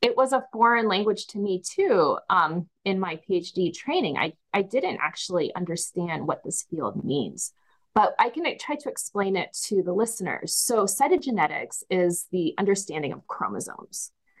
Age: 30-49